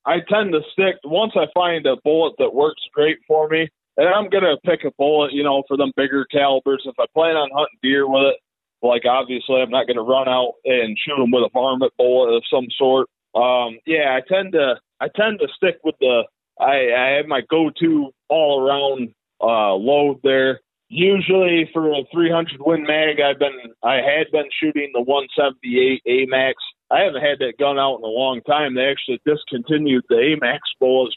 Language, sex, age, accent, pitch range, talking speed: English, male, 20-39, American, 130-160 Hz, 200 wpm